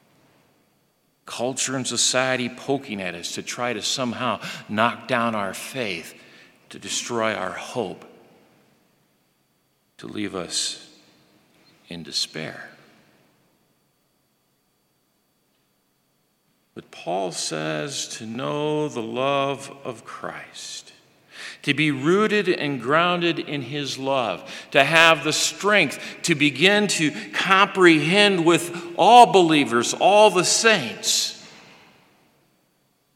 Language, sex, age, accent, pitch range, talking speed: English, male, 50-69, American, 100-165 Hz, 100 wpm